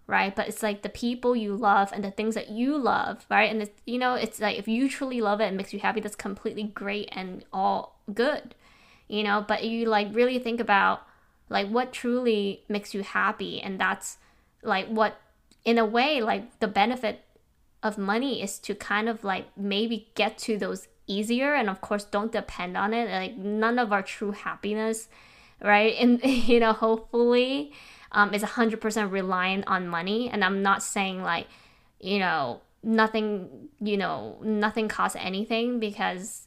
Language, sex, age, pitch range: English, female, 10-29, 200-225 Hz